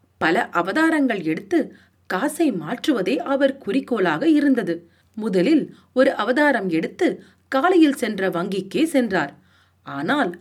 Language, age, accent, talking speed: Tamil, 40-59, native, 100 wpm